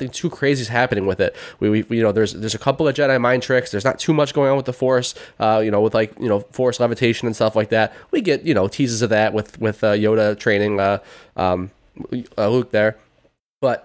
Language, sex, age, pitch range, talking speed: English, male, 20-39, 105-130 Hz, 255 wpm